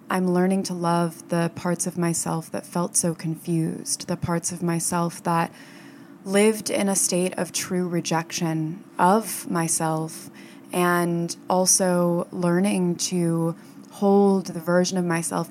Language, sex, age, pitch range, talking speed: English, female, 20-39, 165-180 Hz, 135 wpm